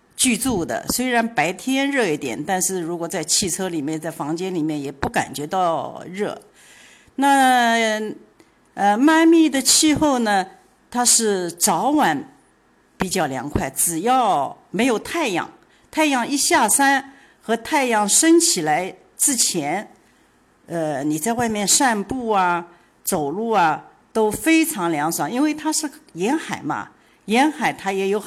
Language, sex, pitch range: Chinese, female, 190-285 Hz